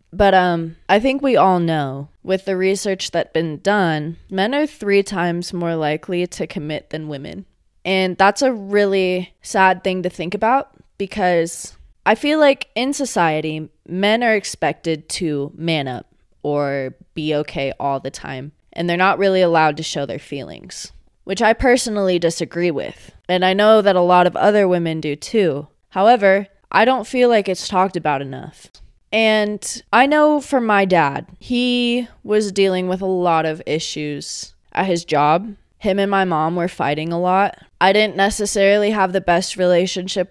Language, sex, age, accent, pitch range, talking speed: English, female, 20-39, American, 165-205 Hz, 175 wpm